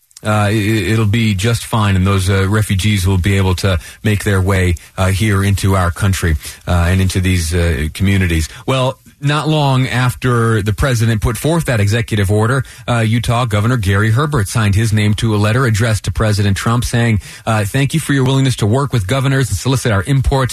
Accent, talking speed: American, 200 wpm